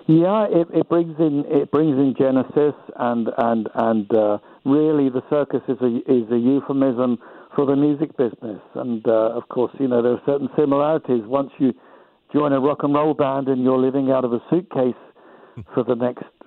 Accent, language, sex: British, English, male